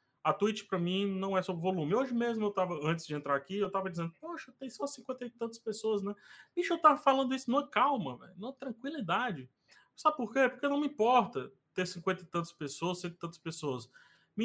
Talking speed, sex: 225 wpm, male